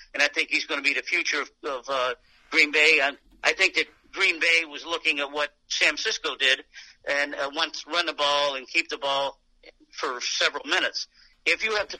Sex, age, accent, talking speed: male, 50-69, American, 220 wpm